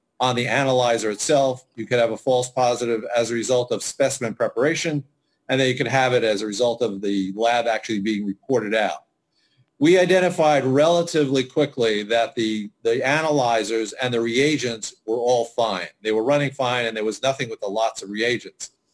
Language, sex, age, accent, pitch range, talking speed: English, male, 40-59, American, 115-145 Hz, 185 wpm